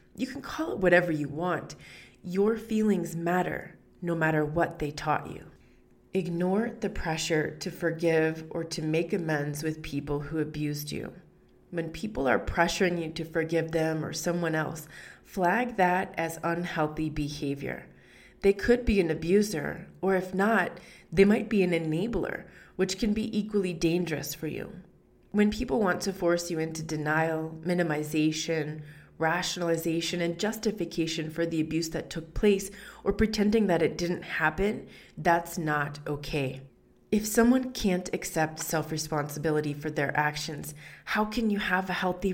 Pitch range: 155-195 Hz